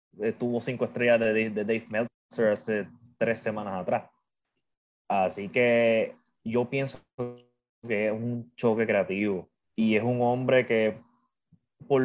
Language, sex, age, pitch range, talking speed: Spanish, male, 20-39, 110-130 Hz, 135 wpm